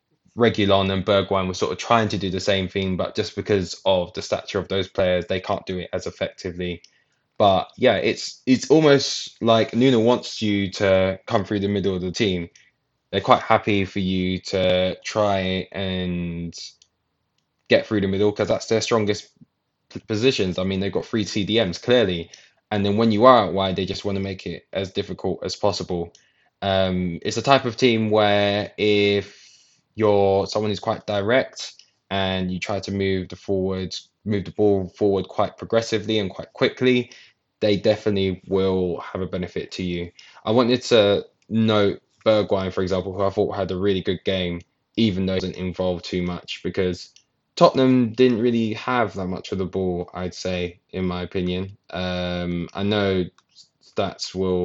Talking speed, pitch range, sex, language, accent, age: 180 wpm, 90-105 Hz, male, English, British, 20-39